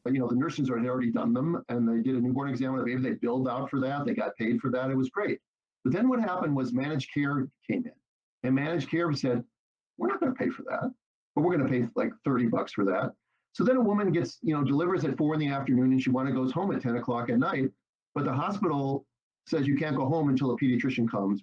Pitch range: 125-150 Hz